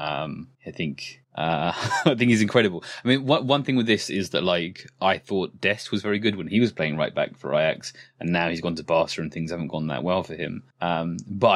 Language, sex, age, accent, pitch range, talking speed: English, male, 20-39, British, 85-115 Hz, 250 wpm